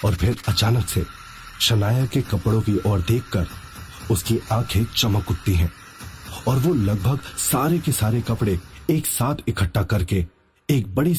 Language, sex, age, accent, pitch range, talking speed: Hindi, male, 30-49, native, 95-120 Hz, 150 wpm